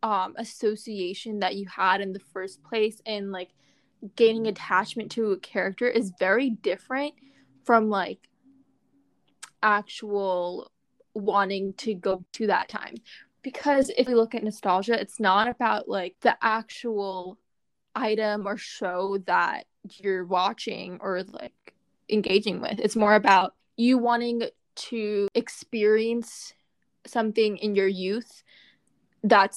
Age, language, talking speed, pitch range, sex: 20-39, English, 125 wpm, 195-235 Hz, female